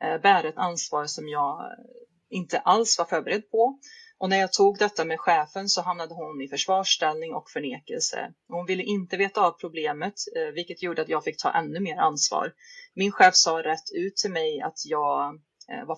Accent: native